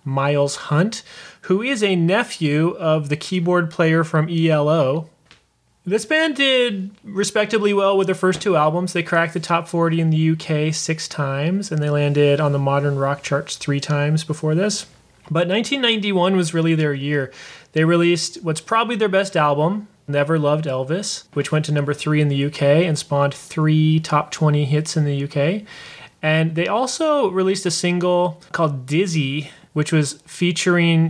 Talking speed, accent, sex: 170 wpm, American, male